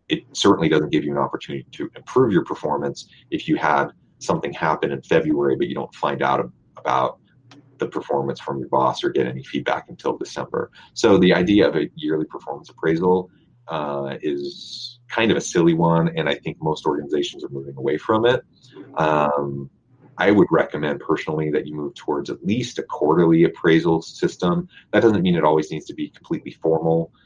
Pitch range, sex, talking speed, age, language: 75-90 Hz, male, 185 wpm, 30-49, English